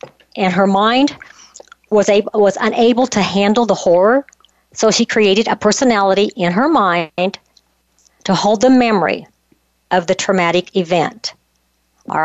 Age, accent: 50-69, American